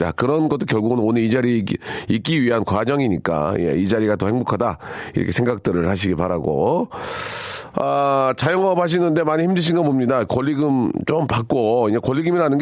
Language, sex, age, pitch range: Korean, male, 40-59, 95-130 Hz